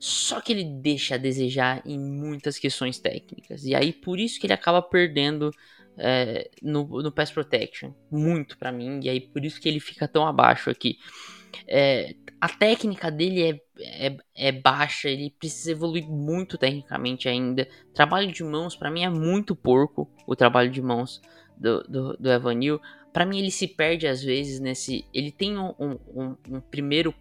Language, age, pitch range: Portuguese, 10-29, 130-160 Hz